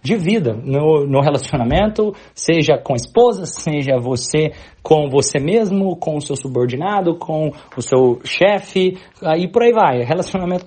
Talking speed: 150 wpm